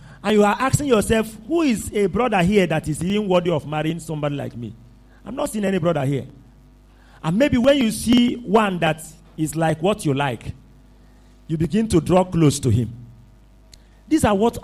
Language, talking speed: English, 195 wpm